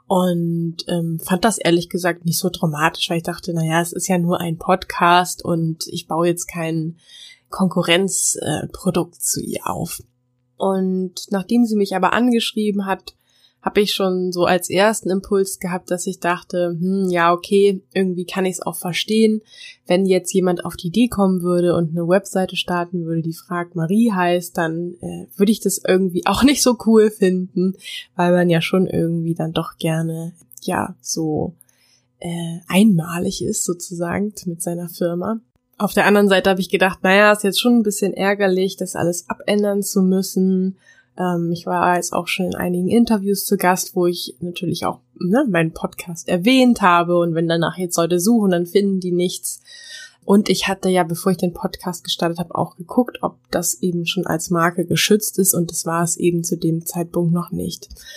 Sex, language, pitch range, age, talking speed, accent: female, German, 170-195 Hz, 20-39, 185 wpm, German